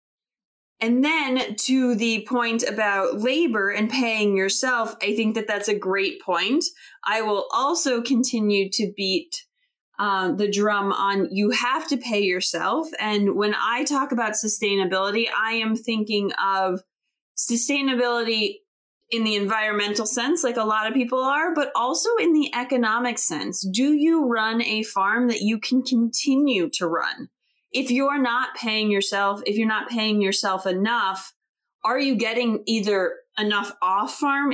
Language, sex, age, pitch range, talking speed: English, female, 30-49, 205-260 Hz, 150 wpm